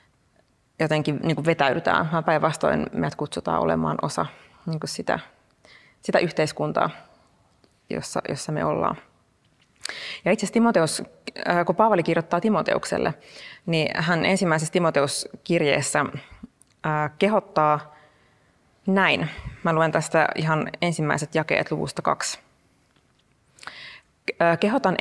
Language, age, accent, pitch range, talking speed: Finnish, 30-49, native, 150-170 Hz, 95 wpm